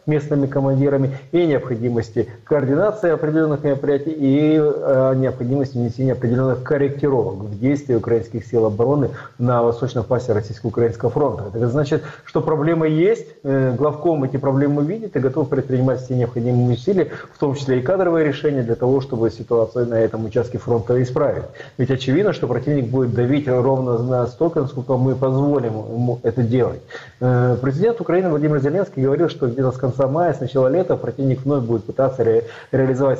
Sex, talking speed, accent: male, 155 wpm, native